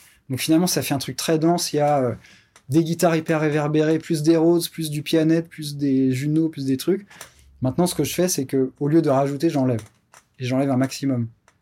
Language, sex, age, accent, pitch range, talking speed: French, male, 20-39, French, 125-160 Hz, 220 wpm